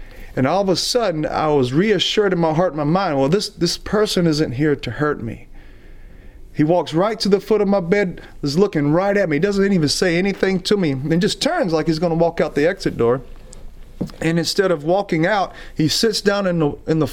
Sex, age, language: male, 30-49, English